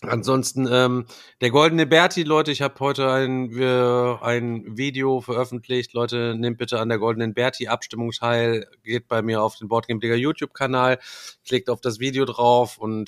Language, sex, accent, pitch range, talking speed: German, male, German, 120-130 Hz, 165 wpm